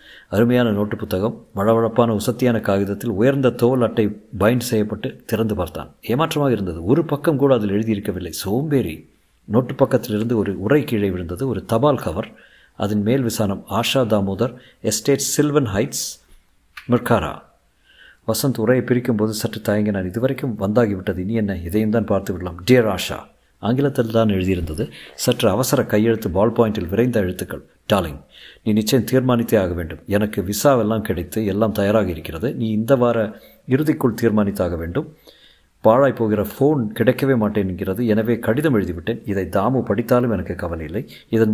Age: 50-69